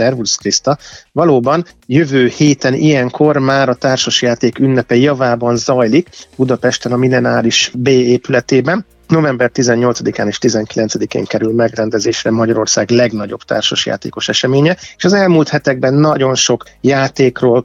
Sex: male